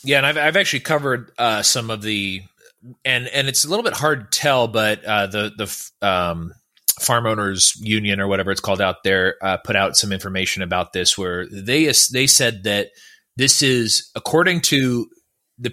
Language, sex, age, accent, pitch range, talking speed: English, male, 30-49, American, 100-130 Hz, 200 wpm